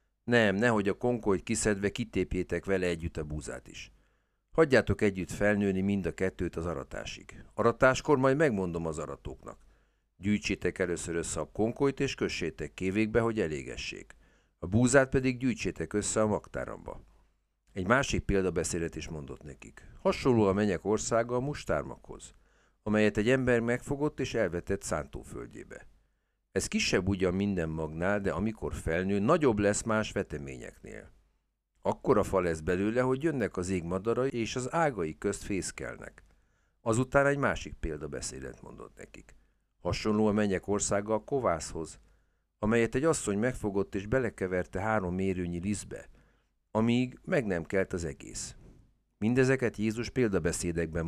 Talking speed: 135 wpm